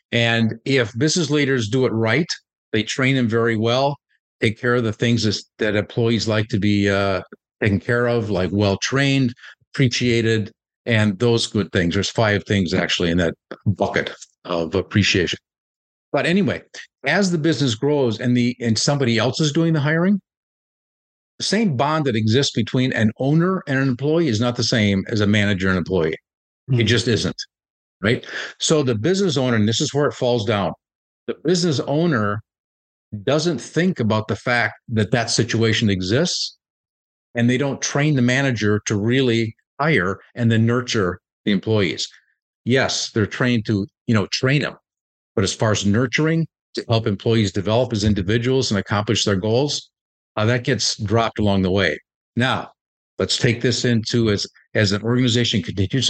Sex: male